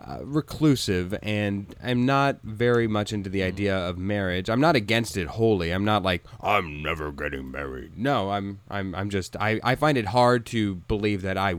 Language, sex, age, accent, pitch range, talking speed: English, male, 30-49, American, 100-125 Hz, 195 wpm